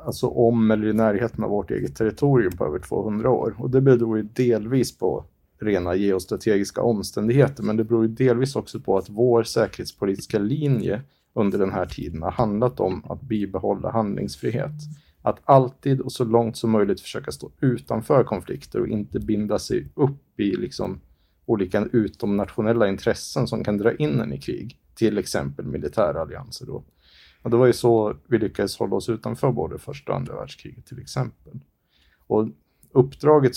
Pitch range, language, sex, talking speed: 100-125 Hz, English, male, 170 wpm